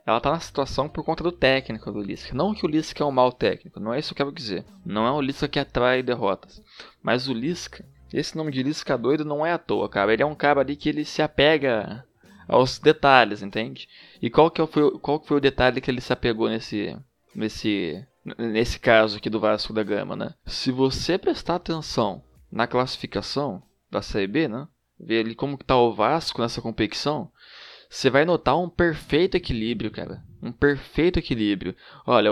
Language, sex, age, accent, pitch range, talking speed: Portuguese, male, 20-39, Brazilian, 115-155 Hz, 205 wpm